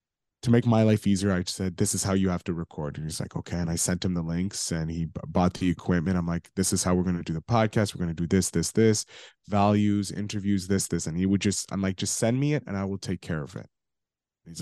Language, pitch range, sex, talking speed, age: English, 95-130 Hz, male, 285 wpm, 20-39